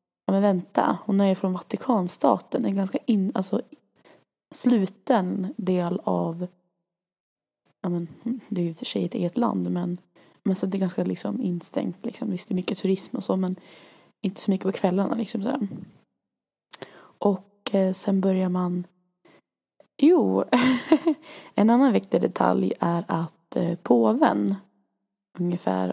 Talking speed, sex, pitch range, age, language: 145 wpm, female, 175-215 Hz, 20-39, Swedish